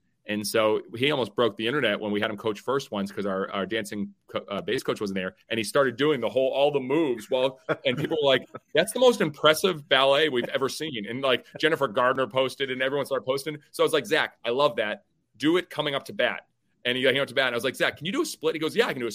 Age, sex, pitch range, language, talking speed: 30-49, male, 115-165 Hz, English, 290 wpm